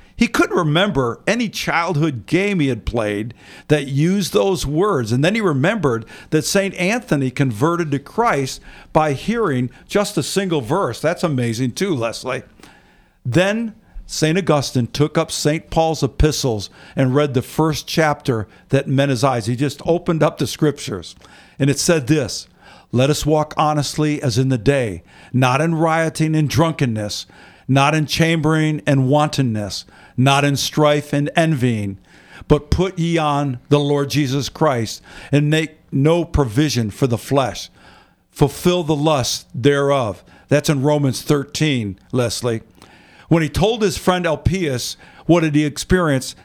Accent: American